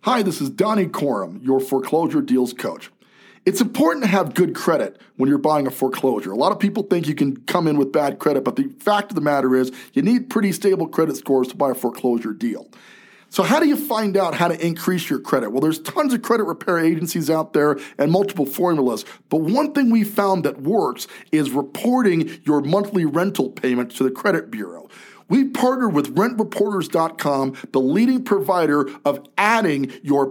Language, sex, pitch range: English, male, 145-215 Hz